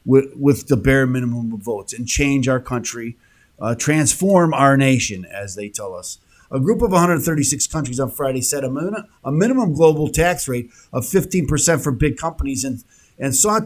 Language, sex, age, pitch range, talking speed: English, male, 50-69, 130-175 Hz, 180 wpm